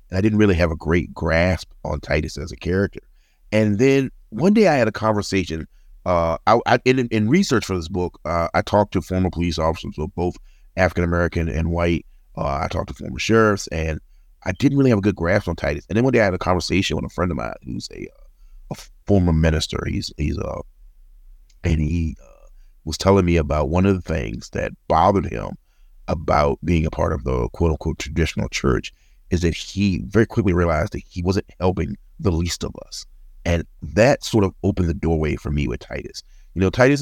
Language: English